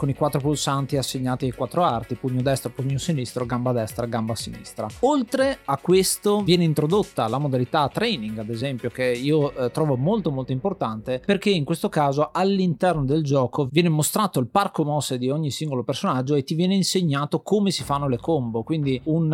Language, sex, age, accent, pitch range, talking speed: Italian, male, 30-49, native, 130-165 Hz, 185 wpm